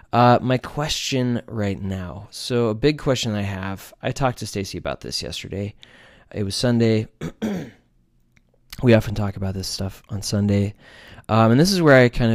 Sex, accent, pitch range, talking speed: male, American, 100-125 Hz, 175 wpm